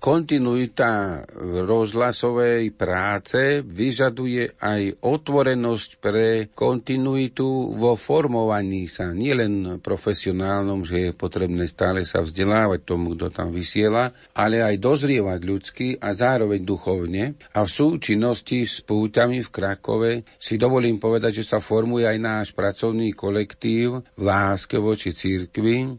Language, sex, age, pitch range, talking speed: Slovak, male, 50-69, 100-115 Hz, 120 wpm